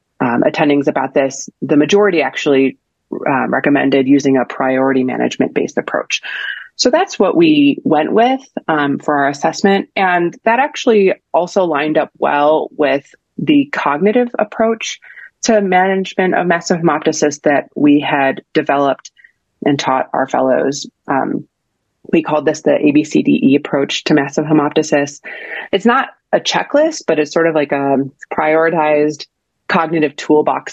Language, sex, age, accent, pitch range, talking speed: English, female, 30-49, American, 140-180 Hz, 140 wpm